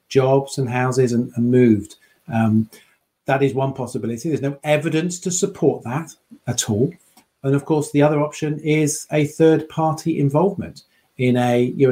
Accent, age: British, 40-59